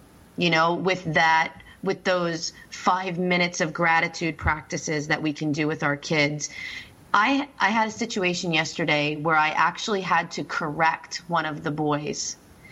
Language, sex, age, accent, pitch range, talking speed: English, female, 30-49, American, 150-180 Hz, 160 wpm